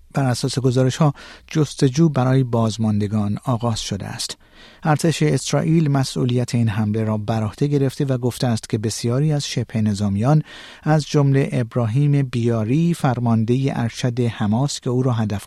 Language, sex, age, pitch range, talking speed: Persian, male, 50-69, 115-150 Hz, 140 wpm